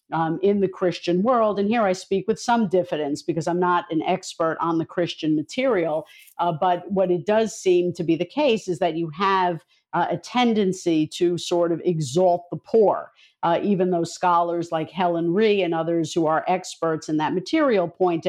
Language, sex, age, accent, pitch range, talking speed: English, female, 50-69, American, 170-195 Hz, 195 wpm